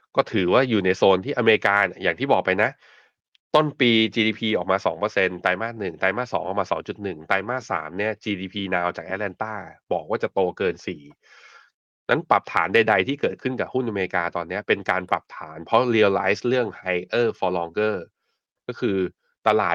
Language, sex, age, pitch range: Thai, male, 20-39, 95-120 Hz